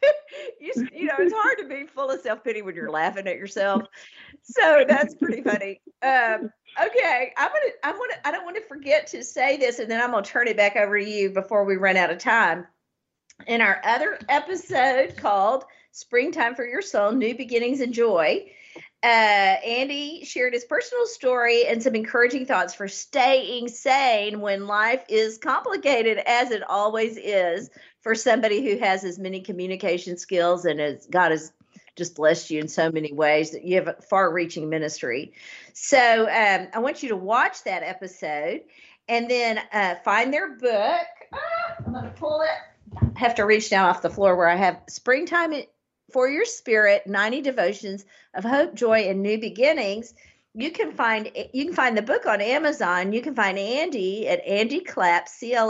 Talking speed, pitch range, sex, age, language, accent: 185 wpm, 195-275 Hz, female, 50-69, English, American